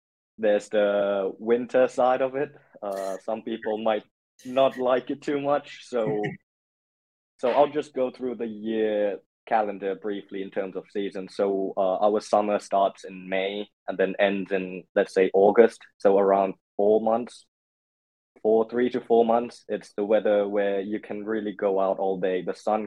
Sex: male